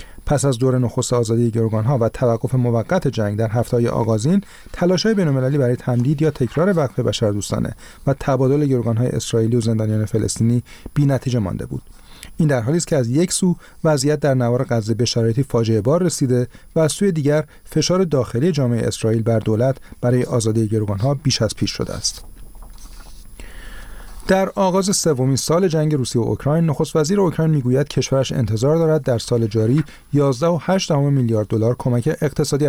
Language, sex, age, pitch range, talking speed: Persian, male, 40-59, 115-155 Hz, 170 wpm